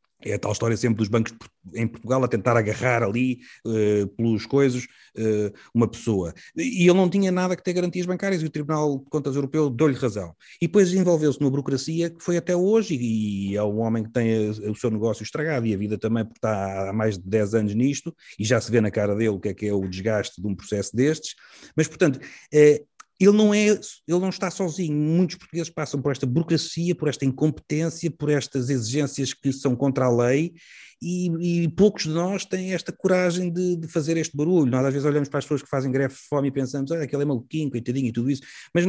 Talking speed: 220 wpm